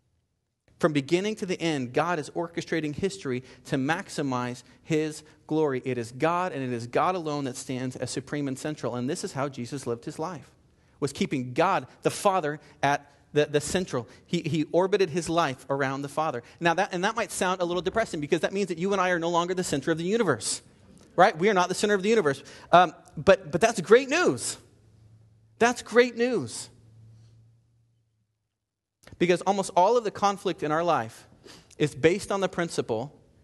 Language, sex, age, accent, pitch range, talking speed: English, male, 30-49, American, 140-200 Hz, 195 wpm